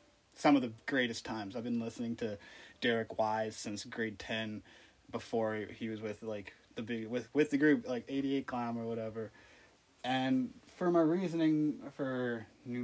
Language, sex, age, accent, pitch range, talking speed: English, male, 20-39, American, 110-125 Hz, 170 wpm